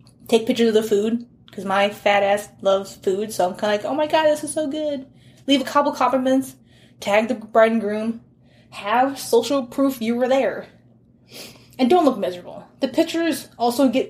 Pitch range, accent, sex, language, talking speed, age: 200-265 Hz, American, female, English, 195 wpm, 20-39